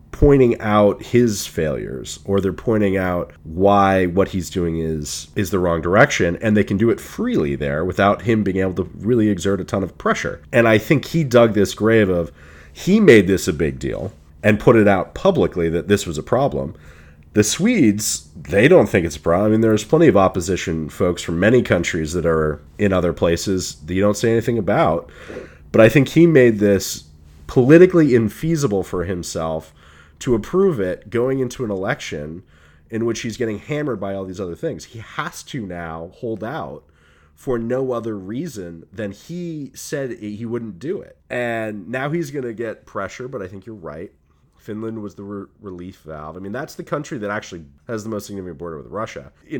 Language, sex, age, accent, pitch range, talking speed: English, male, 30-49, American, 85-120 Hz, 200 wpm